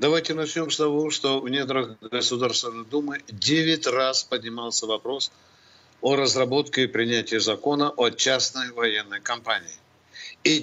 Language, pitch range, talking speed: Russian, 140-180 Hz, 130 wpm